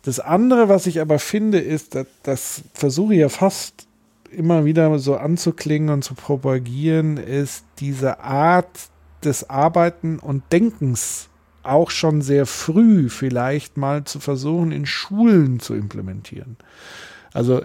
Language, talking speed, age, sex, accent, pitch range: German, 135 wpm, 50-69, male, German, 135-165 Hz